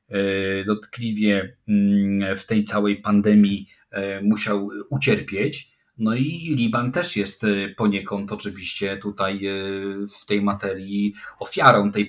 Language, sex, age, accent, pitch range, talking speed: English, male, 40-59, Polish, 105-135 Hz, 100 wpm